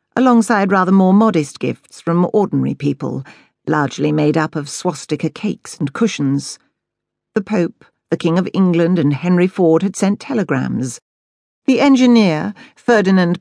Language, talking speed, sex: English, 140 wpm, female